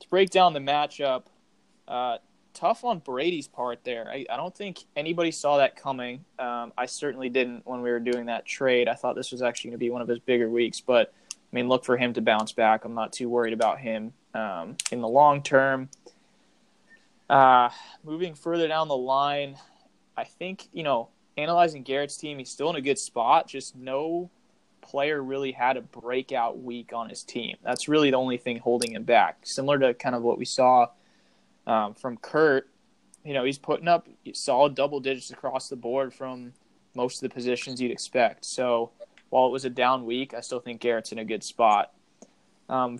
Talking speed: 200 wpm